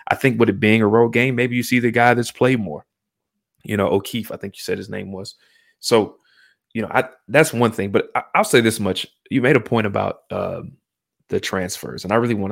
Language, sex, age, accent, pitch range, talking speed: English, male, 20-39, American, 100-125 Hz, 245 wpm